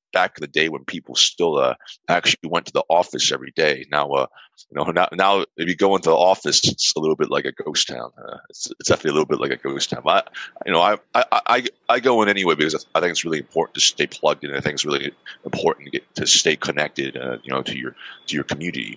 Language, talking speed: English, 270 wpm